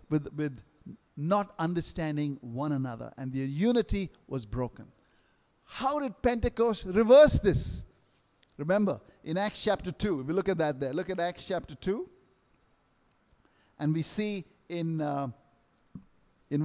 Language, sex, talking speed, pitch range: English, male, 135 wpm, 150-210 Hz